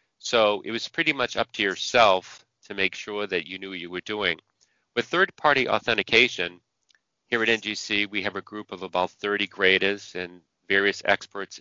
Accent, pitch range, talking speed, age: American, 95-110 Hz, 180 wpm, 40-59